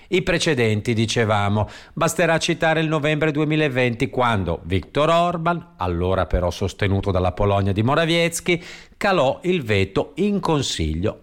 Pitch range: 110-155 Hz